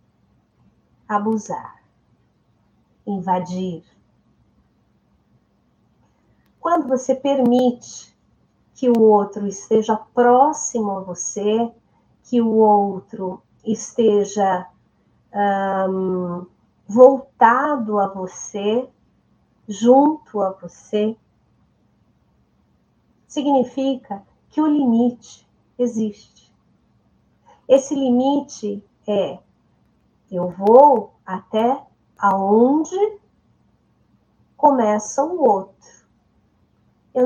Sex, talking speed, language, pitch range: female, 65 wpm, Portuguese, 200-265 Hz